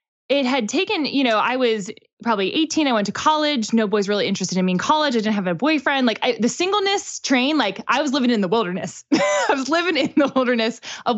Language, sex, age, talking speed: English, female, 20-39, 235 wpm